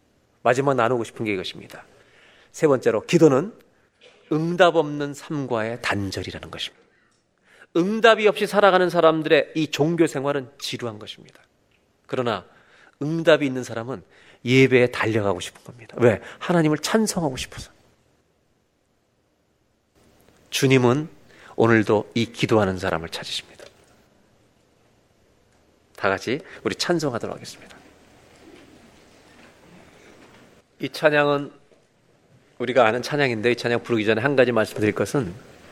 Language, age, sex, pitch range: Korean, 40-59, male, 105-145 Hz